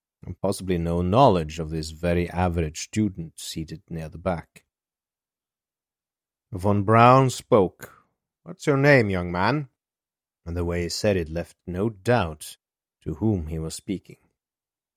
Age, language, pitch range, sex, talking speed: 30-49, English, 90-120 Hz, male, 140 wpm